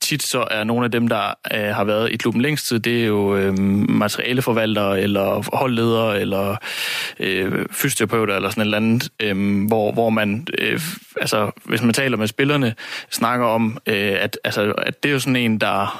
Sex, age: male, 20-39